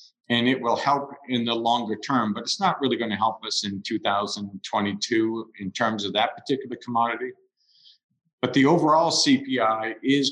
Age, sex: 50-69, male